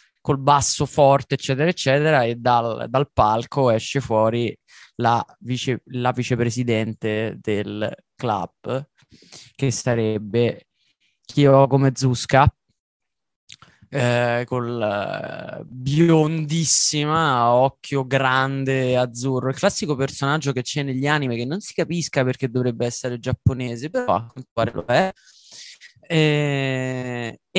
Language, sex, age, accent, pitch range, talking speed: Italian, male, 20-39, native, 125-150 Hz, 110 wpm